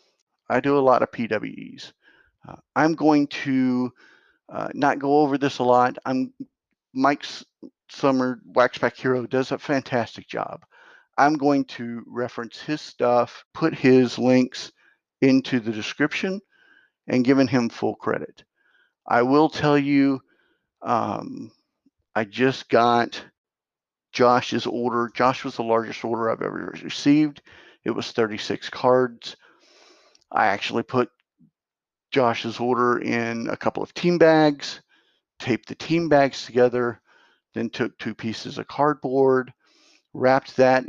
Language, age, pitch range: English, 50-69, 120-145 Hz